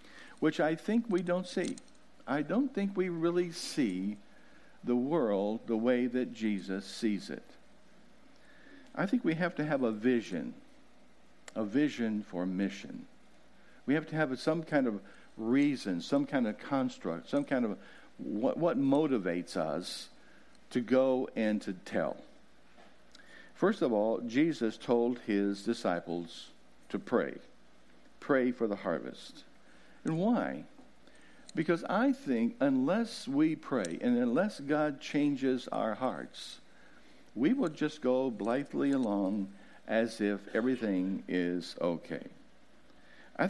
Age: 60-79